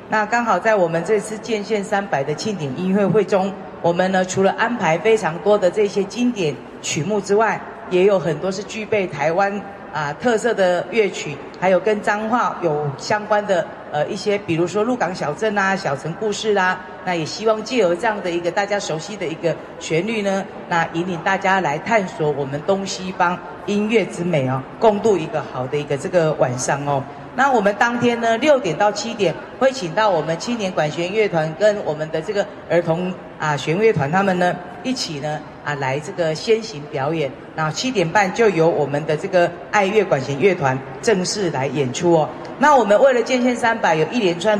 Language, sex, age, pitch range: Chinese, female, 40-59, 160-210 Hz